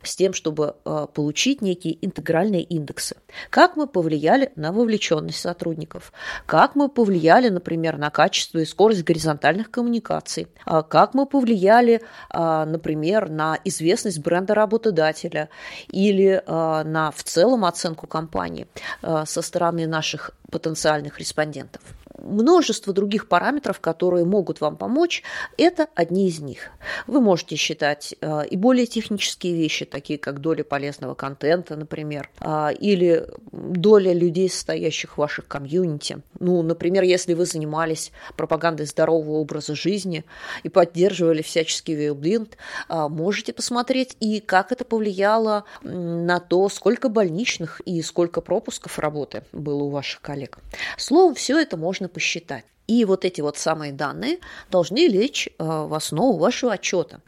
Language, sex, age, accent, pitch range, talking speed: Russian, female, 30-49, native, 155-205 Hz, 125 wpm